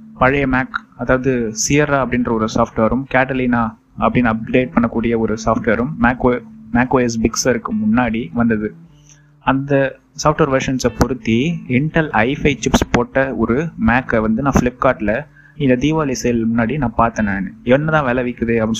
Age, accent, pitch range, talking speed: 20-39, native, 115-140 Hz, 130 wpm